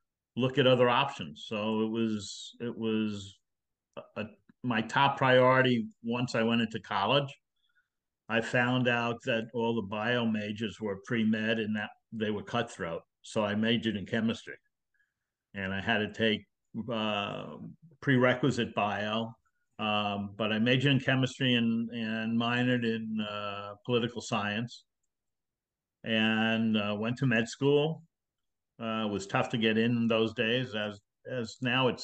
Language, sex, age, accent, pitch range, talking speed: English, male, 50-69, American, 110-125 Hz, 150 wpm